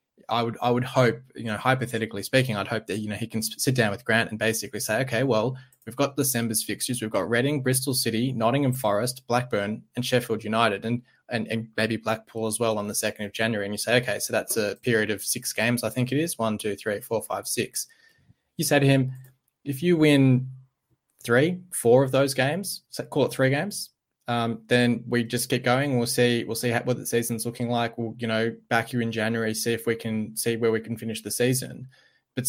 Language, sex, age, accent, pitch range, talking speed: English, male, 20-39, Australian, 110-130 Hz, 230 wpm